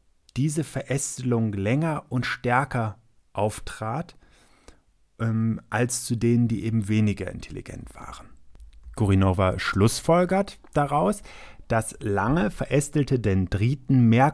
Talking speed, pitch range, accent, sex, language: 95 wpm, 105-135 Hz, German, male, German